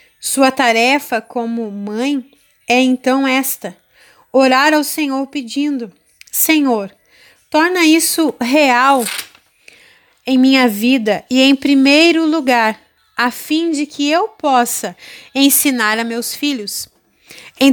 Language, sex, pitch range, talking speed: Portuguese, female, 250-295 Hz, 110 wpm